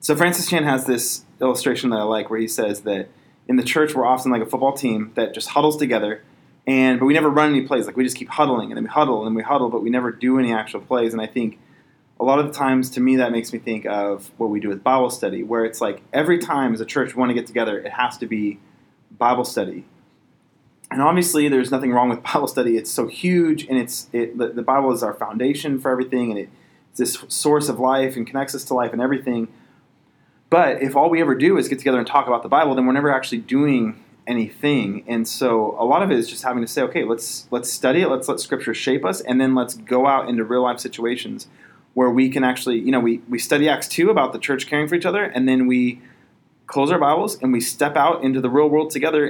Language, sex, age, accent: English, male, 20-39, American